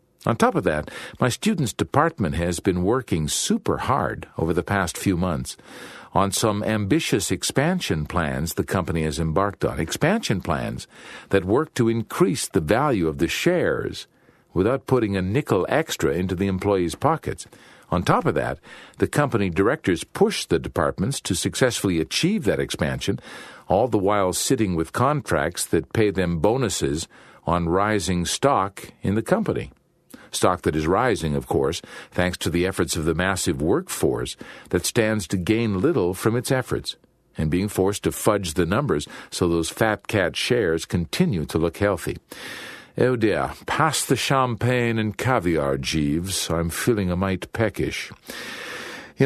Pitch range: 85-115 Hz